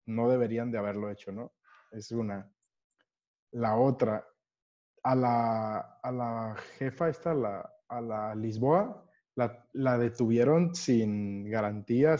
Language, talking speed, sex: Spanish, 130 wpm, male